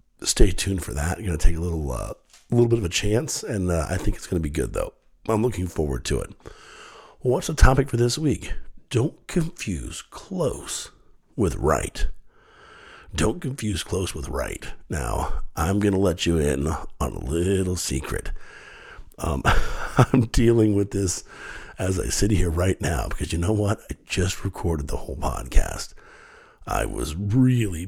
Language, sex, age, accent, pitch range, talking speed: English, male, 50-69, American, 80-110 Hz, 175 wpm